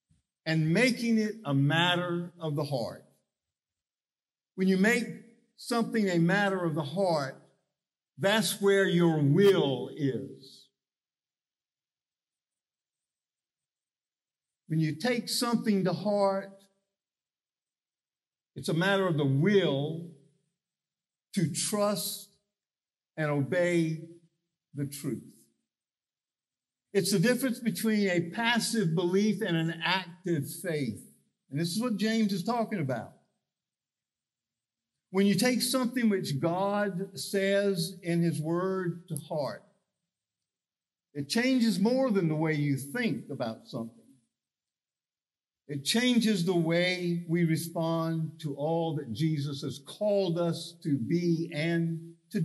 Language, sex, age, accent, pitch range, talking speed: English, male, 60-79, American, 160-205 Hz, 110 wpm